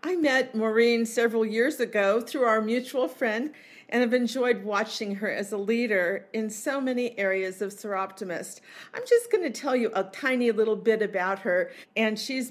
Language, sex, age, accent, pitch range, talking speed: English, female, 50-69, American, 195-235 Hz, 180 wpm